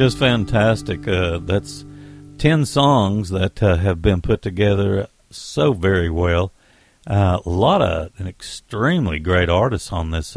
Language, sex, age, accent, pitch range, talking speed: English, male, 60-79, American, 90-120 Hz, 145 wpm